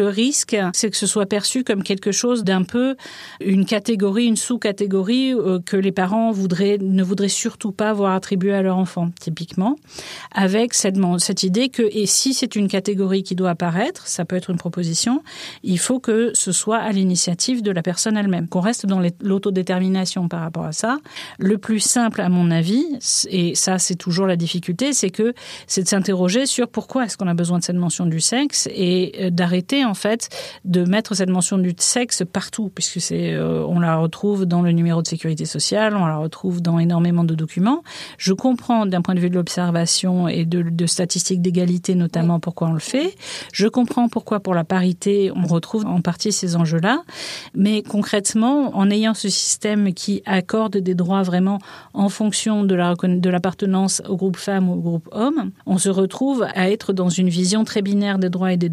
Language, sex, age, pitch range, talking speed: French, female, 40-59, 180-215 Hz, 195 wpm